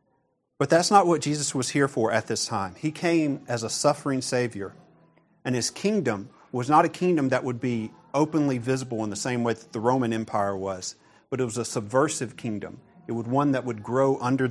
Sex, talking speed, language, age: male, 210 wpm, English, 40-59